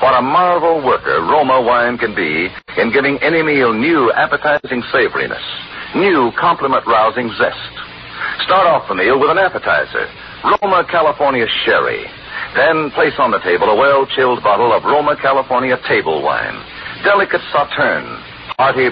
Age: 60-79